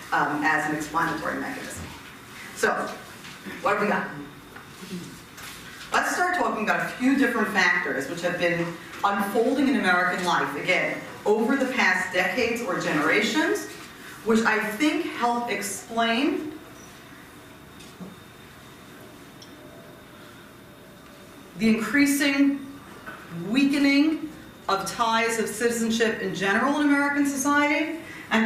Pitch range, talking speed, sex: 180-255 Hz, 105 wpm, female